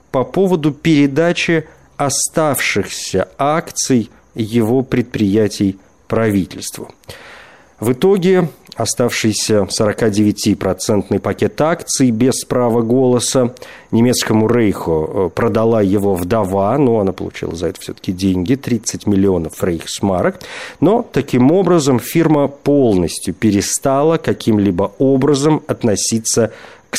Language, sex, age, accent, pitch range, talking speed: Russian, male, 40-59, native, 100-130 Hz, 95 wpm